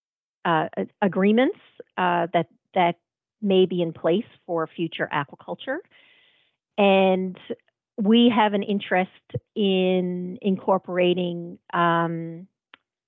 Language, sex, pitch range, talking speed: English, female, 170-195 Hz, 90 wpm